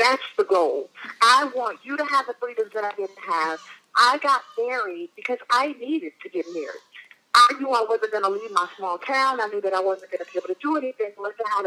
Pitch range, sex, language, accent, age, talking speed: 210-285 Hz, female, English, American, 40-59, 245 wpm